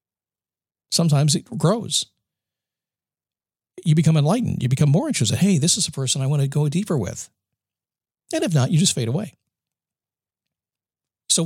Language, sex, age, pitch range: English, male, 50-69, 120-165 Hz